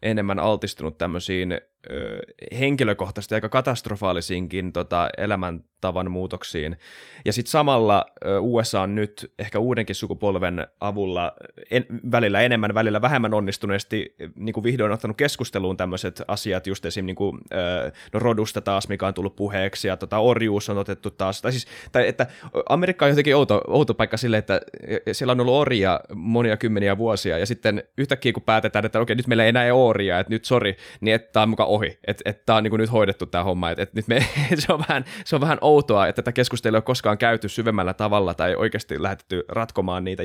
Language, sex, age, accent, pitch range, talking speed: Finnish, male, 20-39, native, 95-115 Hz, 185 wpm